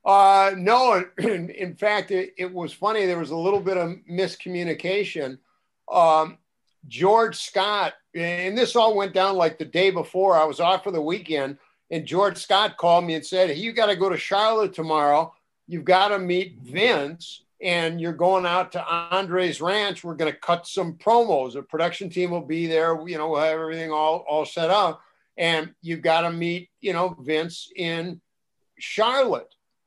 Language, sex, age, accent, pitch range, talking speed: English, male, 50-69, American, 165-200 Hz, 185 wpm